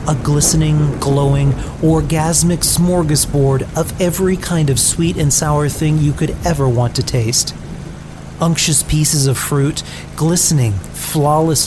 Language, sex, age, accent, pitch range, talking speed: English, male, 40-59, American, 130-155 Hz, 130 wpm